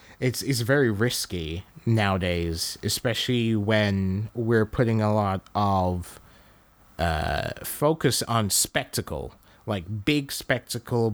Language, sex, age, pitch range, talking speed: English, male, 20-39, 95-115 Hz, 100 wpm